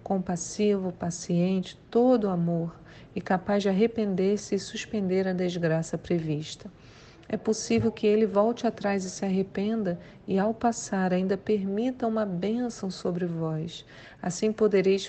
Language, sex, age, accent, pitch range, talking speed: Portuguese, female, 40-59, Brazilian, 180-225 Hz, 130 wpm